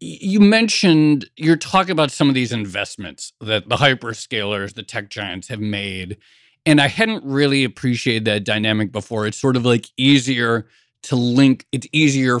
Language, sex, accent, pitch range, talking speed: English, male, American, 105-140 Hz, 165 wpm